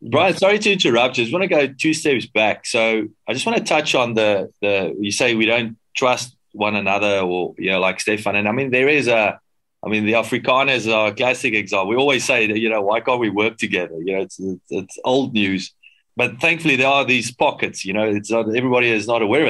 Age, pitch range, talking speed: 30-49, 105-125 Hz, 250 wpm